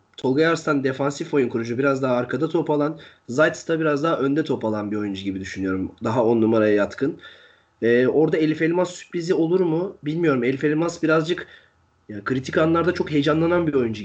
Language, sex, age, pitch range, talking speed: Turkish, male, 30-49, 115-160 Hz, 185 wpm